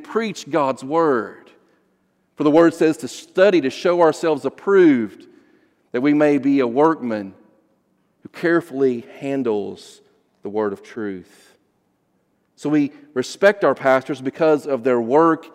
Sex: male